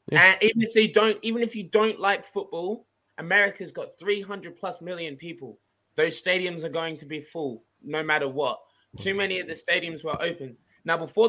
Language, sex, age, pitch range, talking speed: English, male, 20-39, 150-180 Hz, 195 wpm